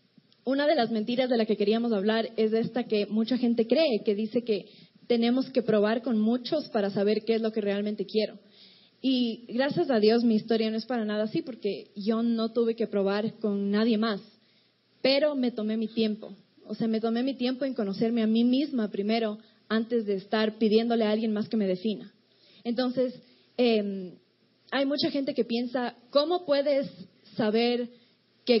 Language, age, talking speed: Spanish, 20-39, 190 wpm